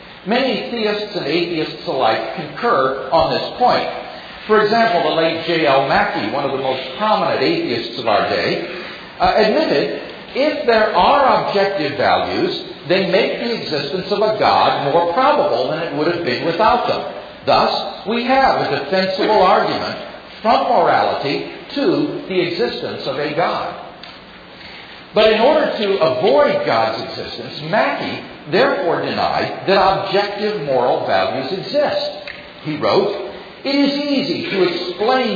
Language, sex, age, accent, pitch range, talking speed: English, male, 50-69, American, 175-250 Hz, 140 wpm